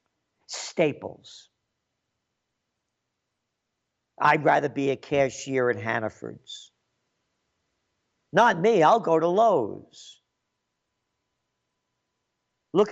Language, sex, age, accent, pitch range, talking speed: English, male, 50-69, American, 120-165 Hz, 70 wpm